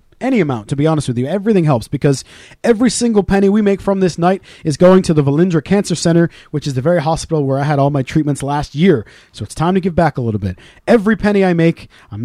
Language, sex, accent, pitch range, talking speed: English, male, American, 145-190 Hz, 255 wpm